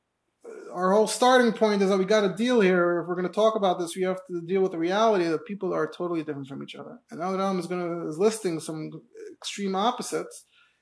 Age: 30-49